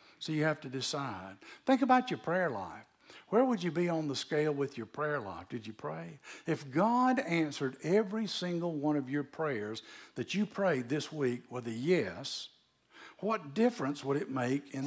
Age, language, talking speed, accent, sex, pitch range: 60-79, English, 190 wpm, American, male, 135-185 Hz